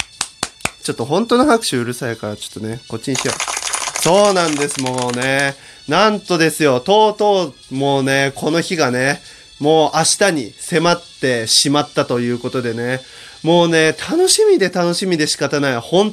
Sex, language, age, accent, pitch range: male, Japanese, 20-39, native, 130-205 Hz